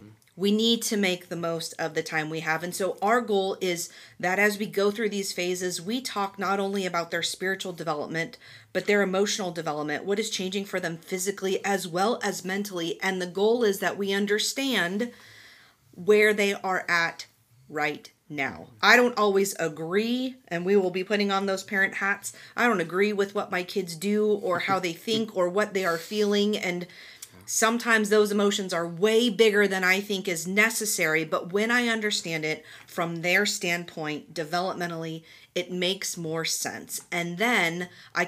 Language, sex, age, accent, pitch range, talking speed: English, female, 40-59, American, 170-205 Hz, 180 wpm